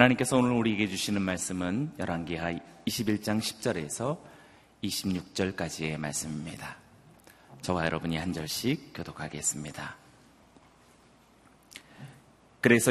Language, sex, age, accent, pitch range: Korean, male, 30-49, native, 95-115 Hz